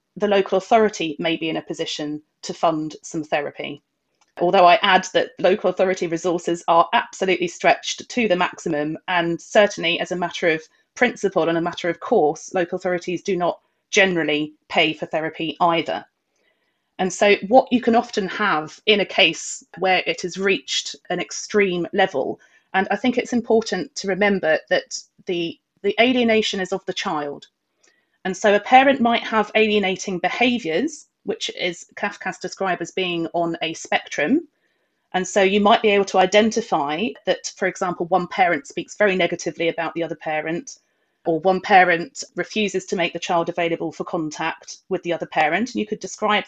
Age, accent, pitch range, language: 30-49, British, 170-210 Hz, English